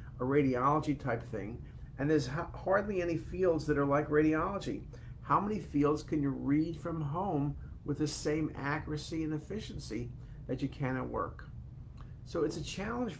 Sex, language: male, English